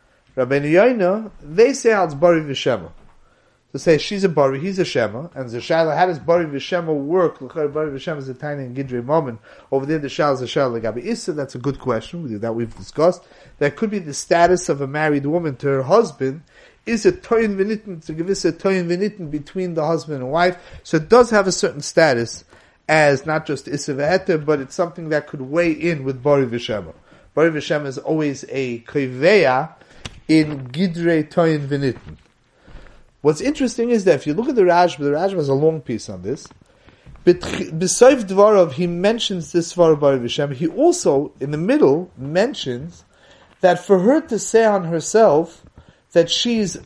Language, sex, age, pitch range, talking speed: English, male, 30-49, 140-185 Hz, 175 wpm